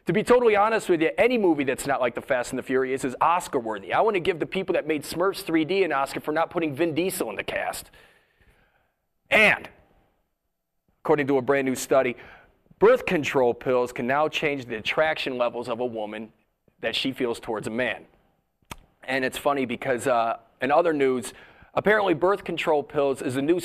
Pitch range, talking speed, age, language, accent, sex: 130-180 Hz, 200 wpm, 30-49, English, American, male